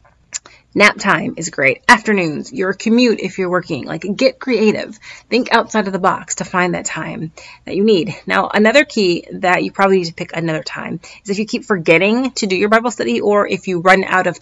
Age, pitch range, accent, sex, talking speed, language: 30-49, 175-215 Hz, American, female, 215 wpm, English